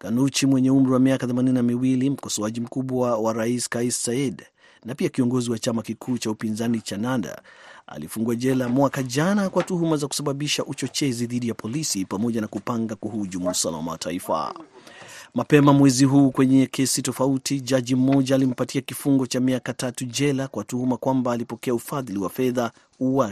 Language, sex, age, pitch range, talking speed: Swahili, male, 30-49, 115-140 Hz, 160 wpm